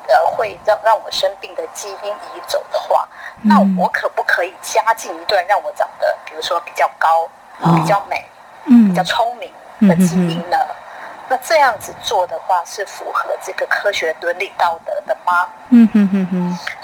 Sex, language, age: female, Chinese, 30-49